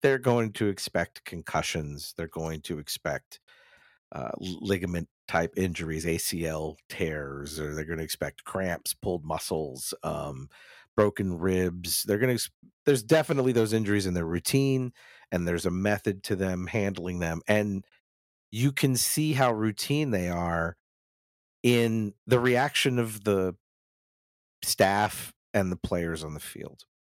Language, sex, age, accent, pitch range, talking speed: English, male, 50-69, American, 80-105 Hz, 145 wpm